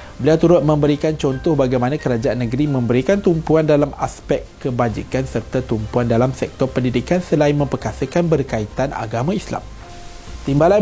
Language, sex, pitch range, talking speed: Malay, male, 125-165 Hz, 130 wpm